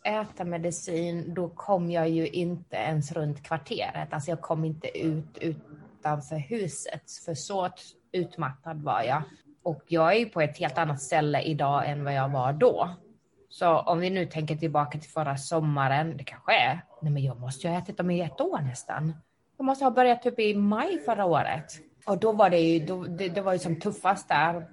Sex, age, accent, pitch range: female, 20-39, native, 155-195 Hz